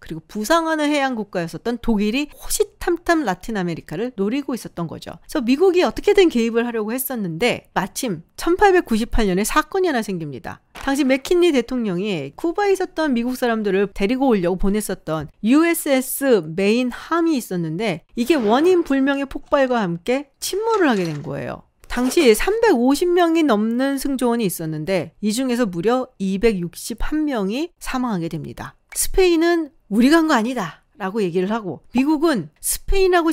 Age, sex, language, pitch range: 40-59, female, Korean, 190-285 Hz